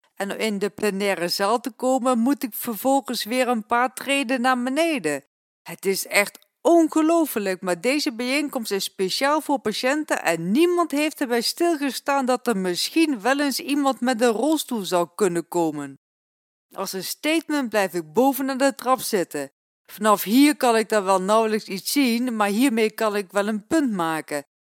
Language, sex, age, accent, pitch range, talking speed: Dutch, female, 40-59, Dutch, 200-285 Hz, 175 wpm